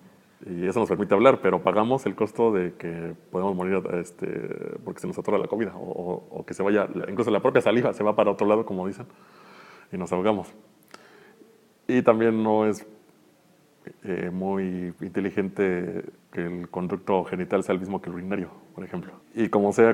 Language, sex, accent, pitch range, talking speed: Spanish, male, Mexican, 95-110 Hz, 185 wpm